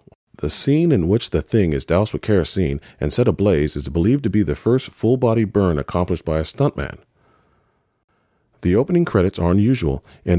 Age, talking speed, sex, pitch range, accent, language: 40-59, 180 wpm, male, 80-115 Hz, American, English